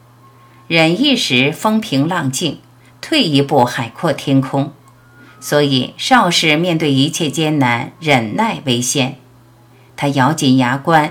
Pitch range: 125-170 Hz